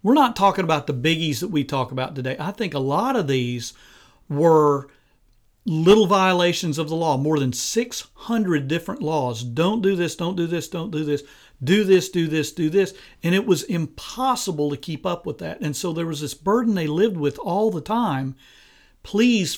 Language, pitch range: English, 145-195 Hz